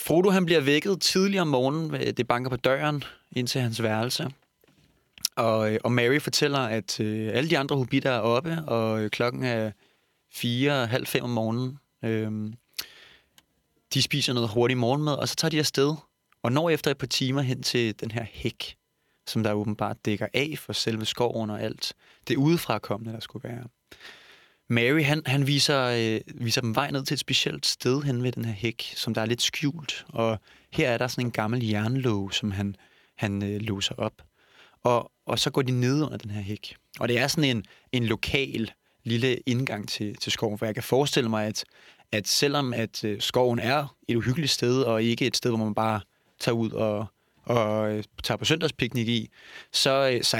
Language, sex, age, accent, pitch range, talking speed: Danish, male, 20-39, native, 110-135 Hz, 190 wpm